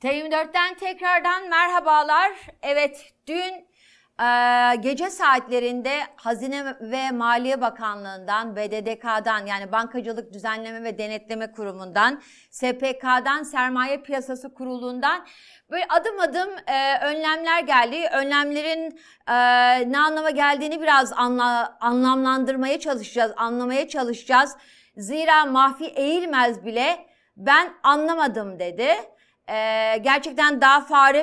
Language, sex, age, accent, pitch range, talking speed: Turkish, female, 30-49, native, 245-315 Hz, 95 wpm